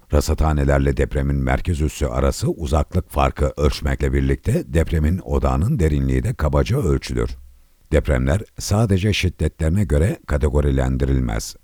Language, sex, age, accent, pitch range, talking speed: Turkish, male, 60-79, native, 65-80 Hz, 105 wpm